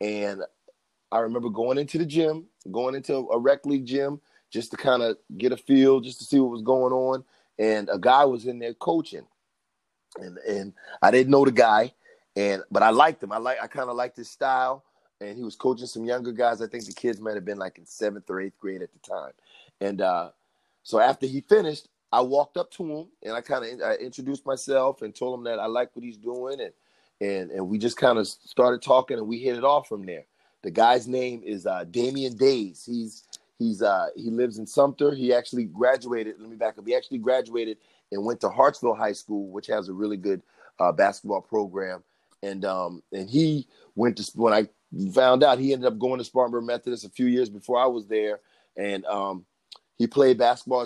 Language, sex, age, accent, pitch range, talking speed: English, male, 30-49, American, 110-130 Hz, 220 wpm